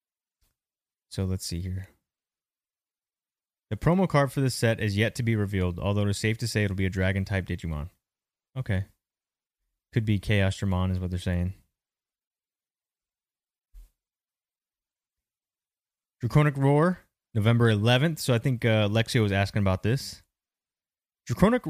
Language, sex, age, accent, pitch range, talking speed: English, male, 20-39, American, 95-120 Hz, 140 wpm